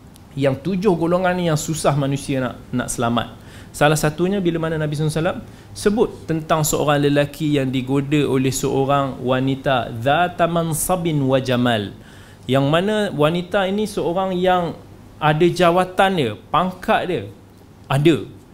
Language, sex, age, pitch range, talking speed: Malay, male, 20-39, 120-165 Hz, 130 wpm